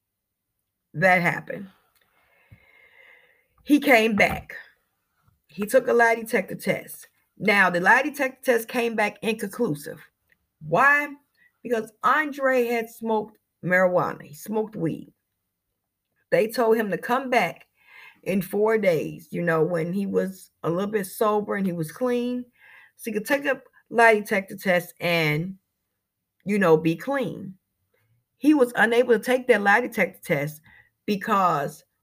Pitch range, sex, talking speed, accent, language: 160-235 Hz, female, 135 wpm, American, English